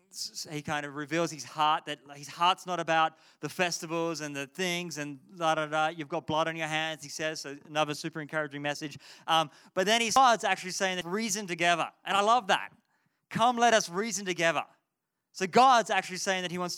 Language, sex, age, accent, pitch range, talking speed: English, male, 20-39, Australian, 145-180 Hz, 205 wpm